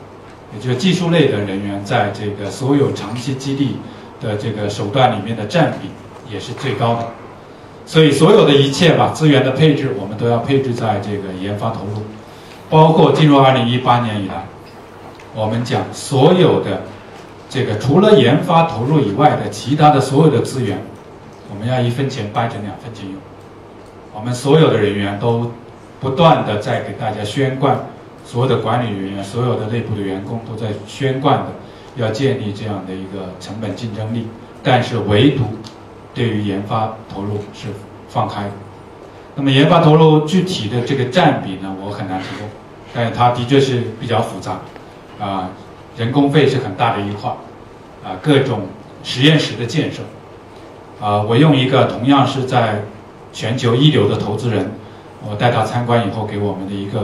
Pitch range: 105-135 Hz